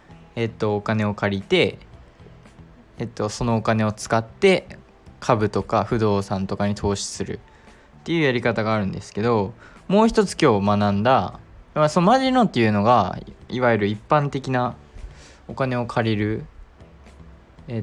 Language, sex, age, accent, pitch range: Japanese, male, 20-39, native, 100-130 Hz